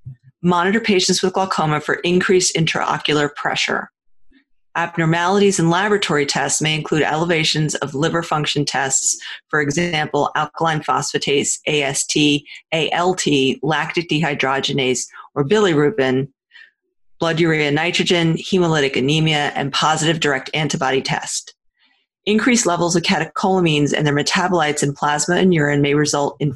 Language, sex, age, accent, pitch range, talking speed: English, female, 40-59, American, 145-180 Hz, 120 wpm